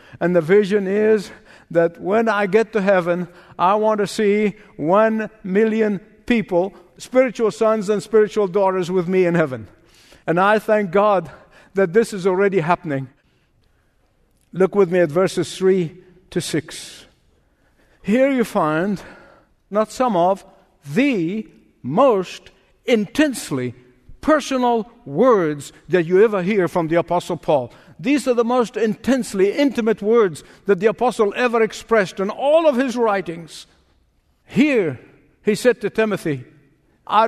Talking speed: 135 wpm